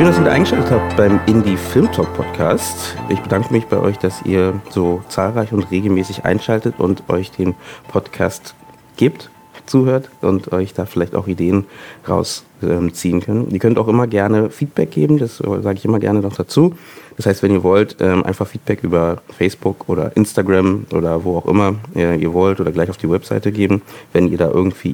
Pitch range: 90-110 Hz